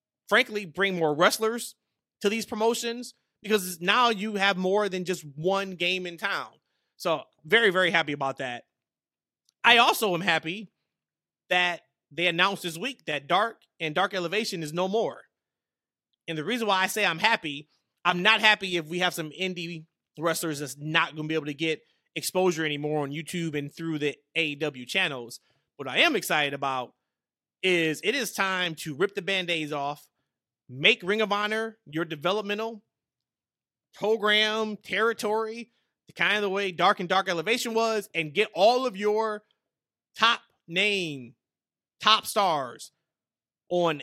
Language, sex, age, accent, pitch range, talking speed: English, male, 30-49, American, 165-205 Hz, 160 wpm